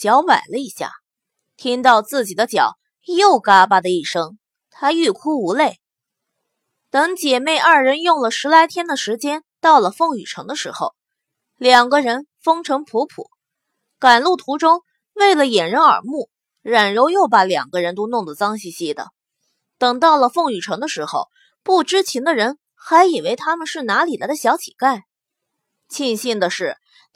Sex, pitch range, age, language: female, 235-330 Hz, 20-39, Chinese